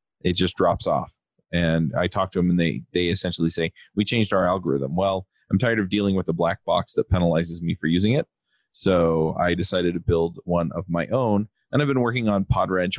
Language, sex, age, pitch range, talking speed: English, male, 30-49, 85-95 Hz, 220 wpm